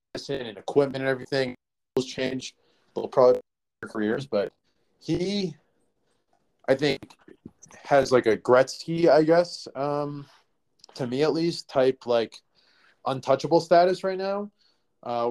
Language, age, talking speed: English, 20-39, 125 wpm